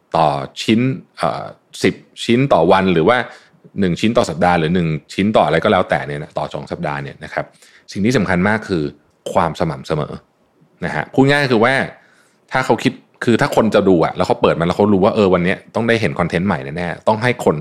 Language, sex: Thai, male